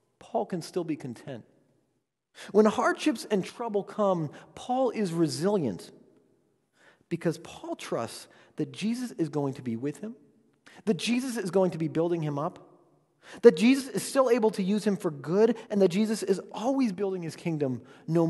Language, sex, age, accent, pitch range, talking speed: English, male, 30-49, American, 155-220 Hz, 170 wpm